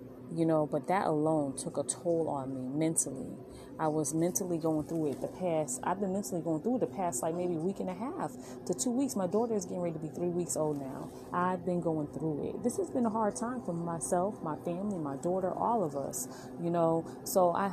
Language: English